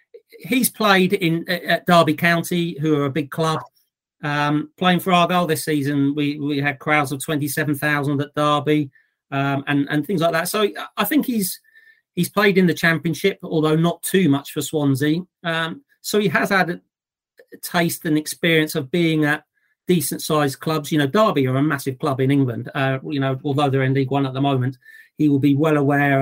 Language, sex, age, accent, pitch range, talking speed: English, male, 40-59, British, 145-175 Hz, 195 wpm